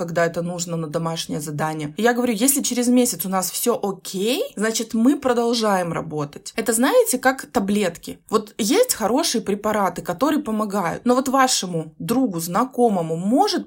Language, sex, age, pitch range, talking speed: Russian, female, 20-39, 190-255 Hz, 155 wpm